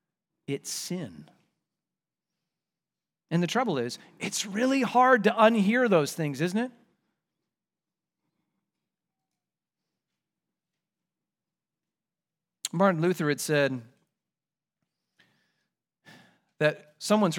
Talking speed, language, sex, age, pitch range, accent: 70 wpm, English, male, 40-59, 160-205 Hz, American